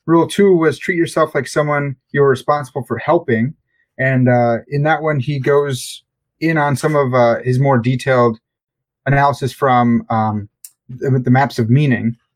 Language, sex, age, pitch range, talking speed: English, male, 30-49, 125-150 Hz, 165 wpm